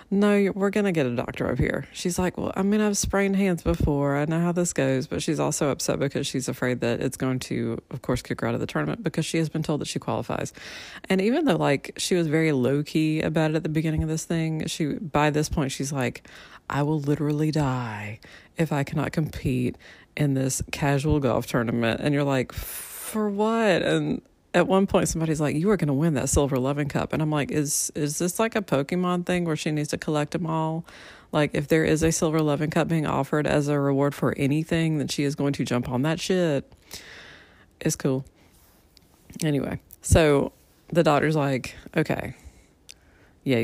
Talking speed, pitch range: 215 wpm, 135-165 Hz